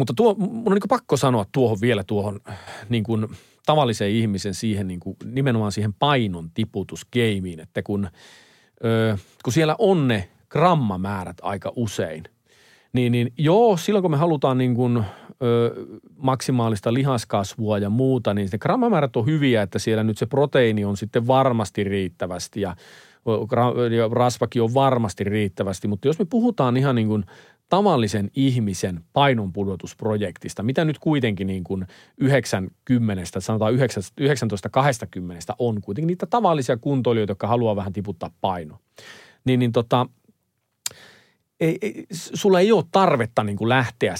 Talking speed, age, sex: 140 wpm, 40-59, male